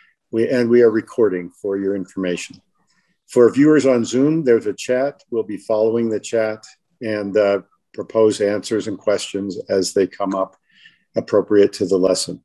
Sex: male